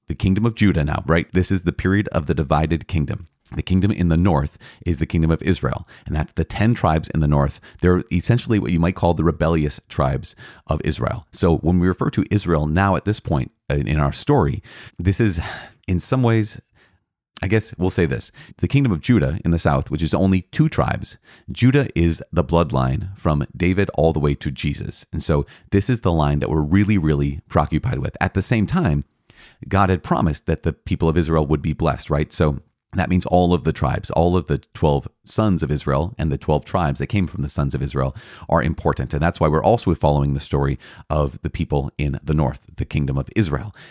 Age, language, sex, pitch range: 30-49, English, male, 75-95 Hz